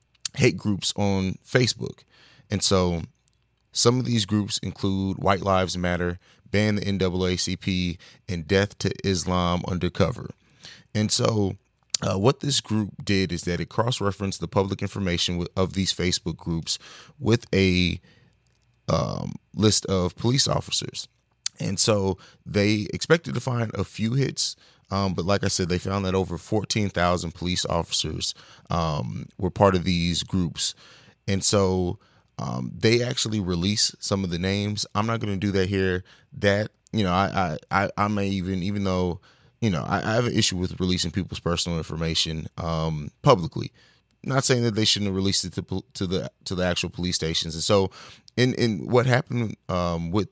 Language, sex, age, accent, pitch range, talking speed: English, male, 30-49, American, 90-110 Hz, 170 wpm